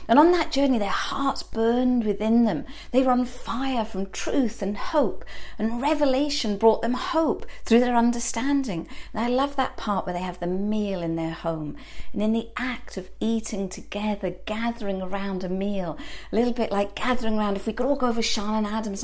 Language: English